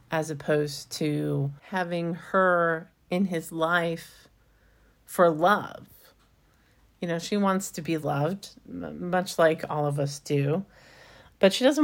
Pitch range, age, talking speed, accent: 145-190 Hz, 40-59, 130 wpm, American